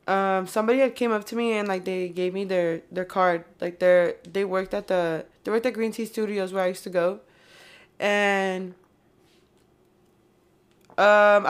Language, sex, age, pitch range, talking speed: English, female, 20-39, 180-215 Hz, 175 wpm